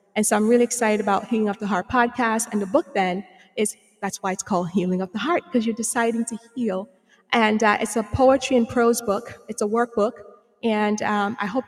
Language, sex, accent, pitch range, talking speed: English, female, American, 205-230 Hz, 225 wpm